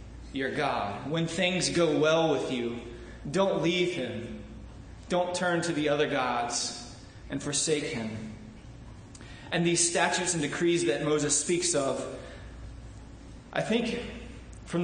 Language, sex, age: English, male, 20-39